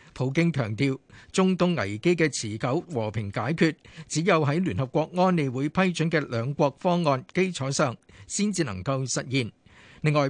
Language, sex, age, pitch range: Chinese, male, 50-69, 130-170 Hz